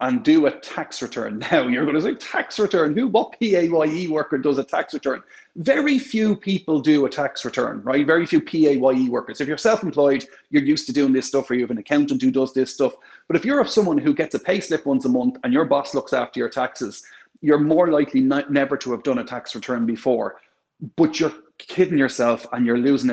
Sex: male